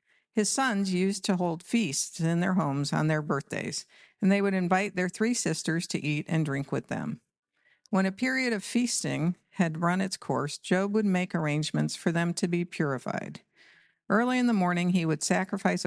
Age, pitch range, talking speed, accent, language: 50-69, 155-205 Hz, 190 wpm, American, English